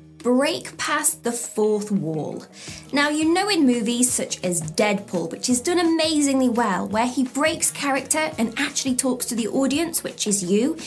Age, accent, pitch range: 20-39, British, 215-310 Hz